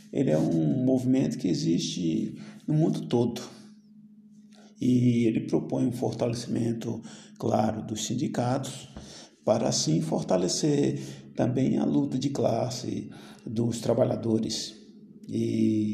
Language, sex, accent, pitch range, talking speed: Portuguese, male, Brazilian, 110-165 Hz, 105 wpm